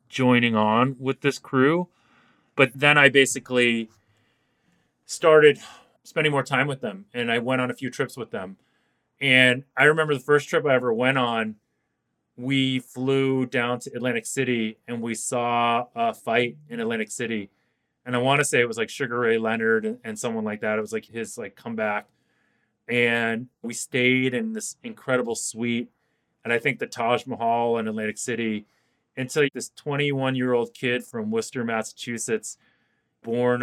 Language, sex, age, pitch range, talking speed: English, male, 30-49, 115-135 Hz, 170 wpm